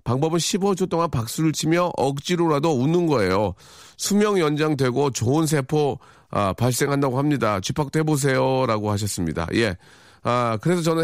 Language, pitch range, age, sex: Korean, 110-160 Hz, 40-59, male